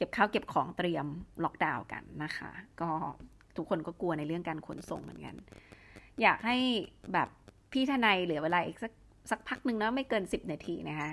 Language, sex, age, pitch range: Thai, female, 30-49, 170-230 Hz